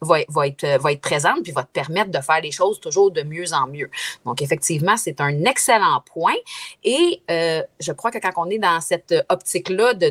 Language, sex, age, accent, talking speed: French, female, 30-49, Canadian, 215 wpm